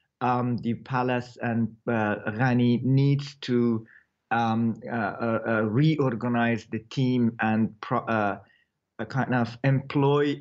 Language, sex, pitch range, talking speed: English, male, 125-150 Hz, 125 wpm